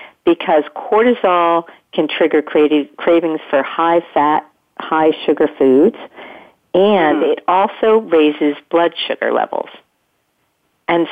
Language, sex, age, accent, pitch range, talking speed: English, female, 50-69, American, 145-170 Hz, 105 wpm